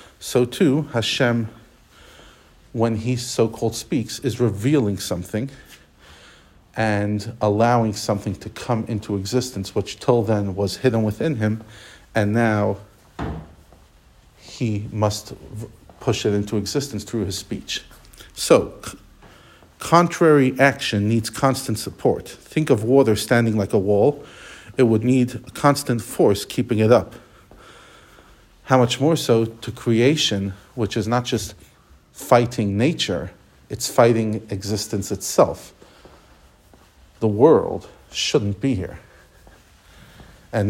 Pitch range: 100-120 Hz